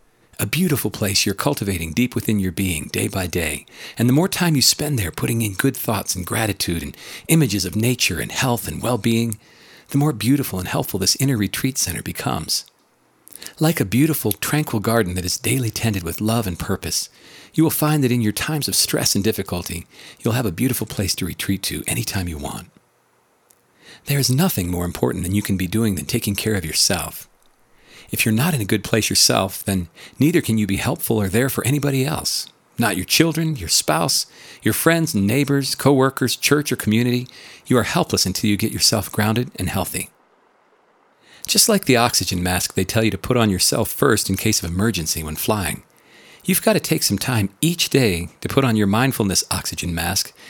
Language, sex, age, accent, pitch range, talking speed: English, male, 40-59, American, 95-135 Hz, 200 wpm